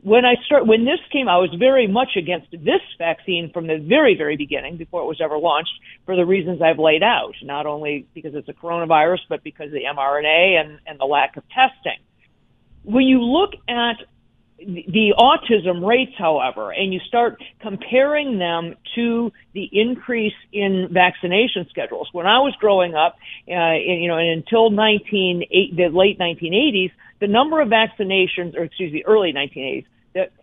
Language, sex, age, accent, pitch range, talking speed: English, female, 50-69, American, 165-225 Hz, 175 wpm